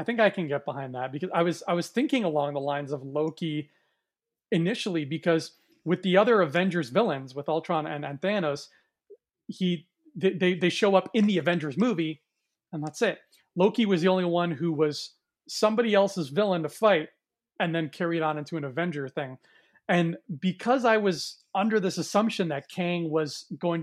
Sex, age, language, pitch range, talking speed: male, 30-49, English, 155-195 Hz, 185 wpm